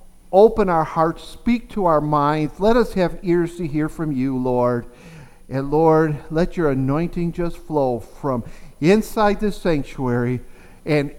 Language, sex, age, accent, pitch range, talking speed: English, male, 50-69, American, 160-210 Hz, 150 wpm